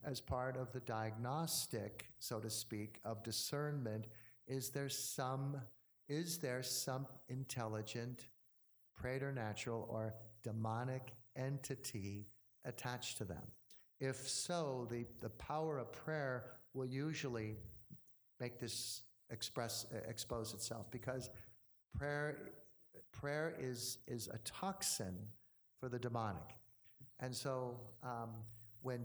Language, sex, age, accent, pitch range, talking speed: English, male, 50-69, American, 110-135 Hz, 110 wpm